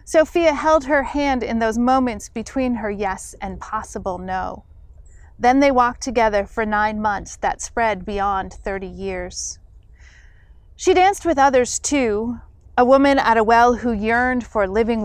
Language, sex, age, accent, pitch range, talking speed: English, female, 30-49, American, 200-260 Hz, 155 wpm